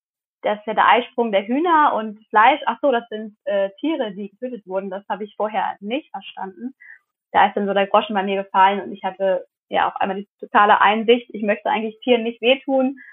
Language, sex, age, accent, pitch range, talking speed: German, female, 20-39, German, 205-255 Hz, 220 wpm